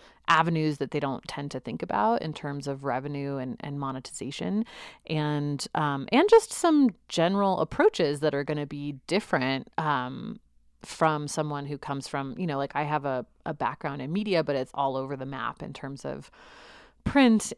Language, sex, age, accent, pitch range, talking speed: English, female, 30-49, American, 140-180 Hz, 185 wpm